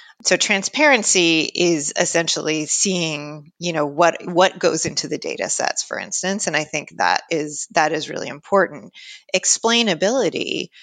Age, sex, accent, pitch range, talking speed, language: 30-49, female, American, 160-210 Hz, 145 wpm, English